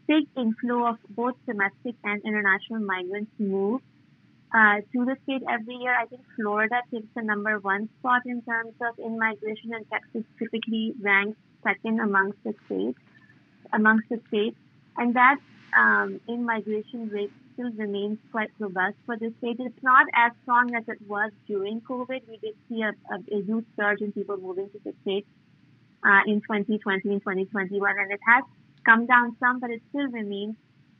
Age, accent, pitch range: 30-49, Indian, 200-230 Hz